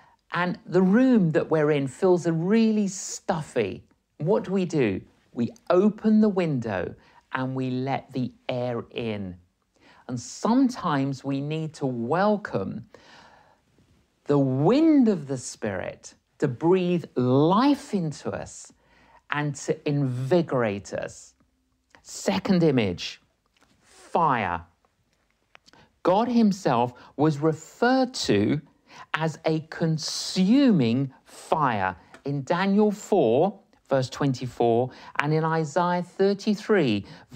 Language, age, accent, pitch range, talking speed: English, 50-69, British, 130-190 Hz, 105 wpm